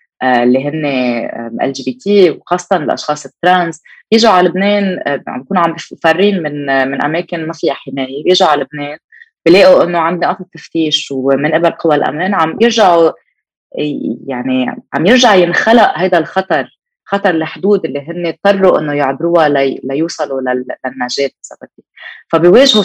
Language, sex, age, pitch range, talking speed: Arabic, female, 20-39, 135-185 Hz, 135 wpm